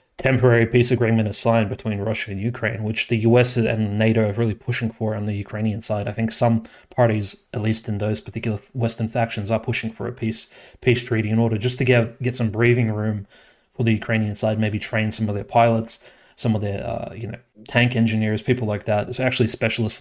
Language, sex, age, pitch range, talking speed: English, male, 20-39, 110-120 Hz, 220 wpm